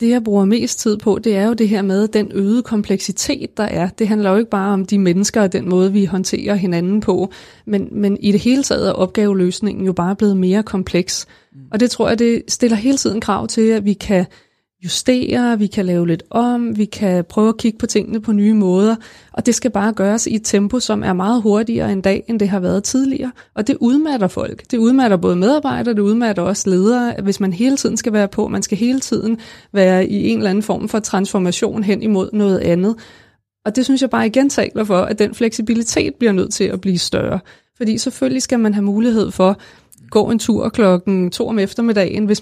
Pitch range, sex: 195-230 Hz, female